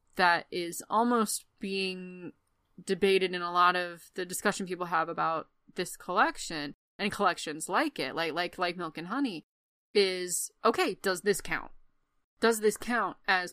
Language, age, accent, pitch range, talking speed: English, 20-39, American, 175-205 Hz, 155 wpm